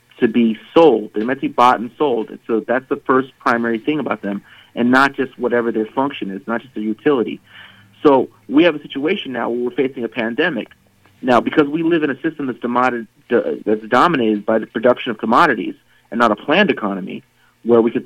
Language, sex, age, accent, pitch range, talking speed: English, male, 30-49, American, 115-150 Hz, 215 wpm